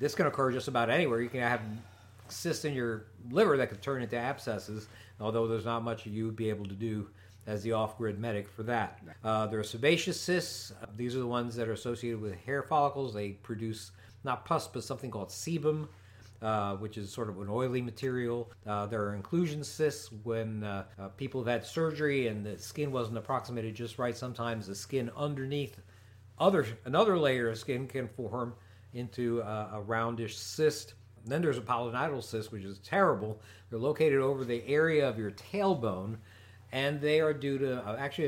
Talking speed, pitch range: 195 wpm, 105-135 Hz